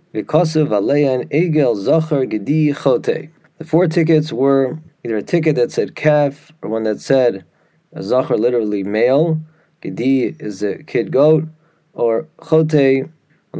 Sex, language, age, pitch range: male, English, 30-49, 125-160 Hz